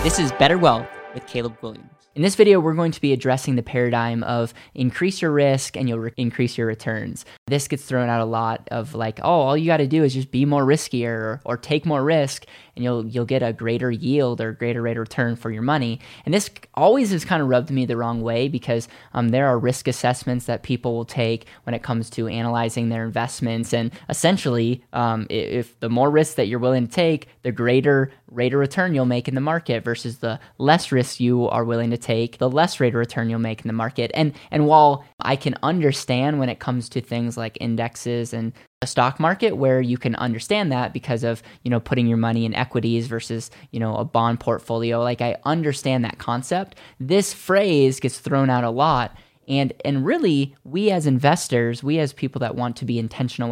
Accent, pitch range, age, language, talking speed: American, 115-140 Hz, 10-29, English, 220 wpm